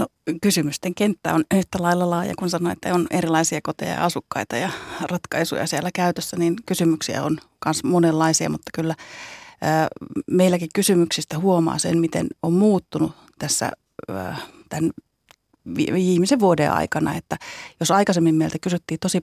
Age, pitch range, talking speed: 30-49, 160-180 Hz, 135 wpm